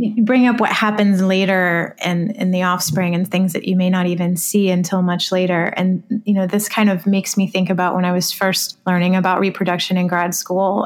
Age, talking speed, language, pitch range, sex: 20-39, 225 wpm, English, 185-220 Hz, female